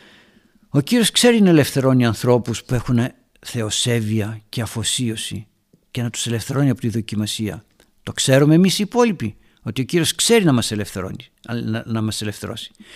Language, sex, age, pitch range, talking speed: Greek, male, 60-79, 115-165 Hz, 150 wpm